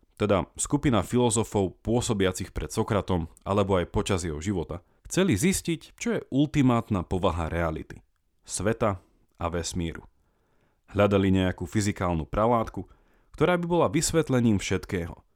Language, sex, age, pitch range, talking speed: Slovak, male, 30-49, 85-125 Hz, 115 wpm